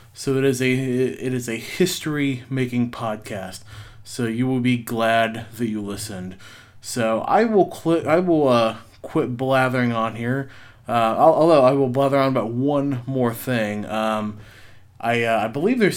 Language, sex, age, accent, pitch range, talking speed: English, male, 20-39, American, 110-130 Hz, 165 wpm